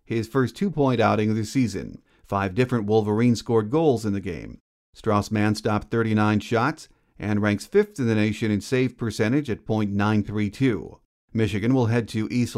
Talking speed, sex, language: 170 wpm, male, English